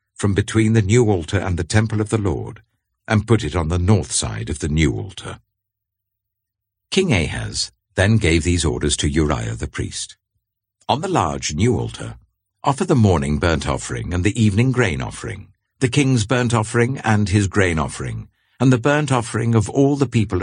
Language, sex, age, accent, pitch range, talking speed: English, male, 60-79, British, 95-115 Hz, 185 wpm